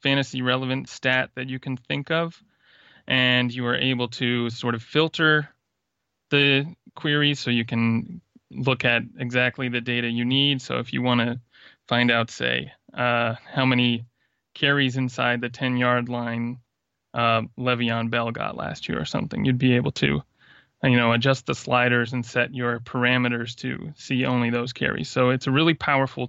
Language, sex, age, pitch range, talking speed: English, male, 20-39, 120-130 Hz, 175 wpm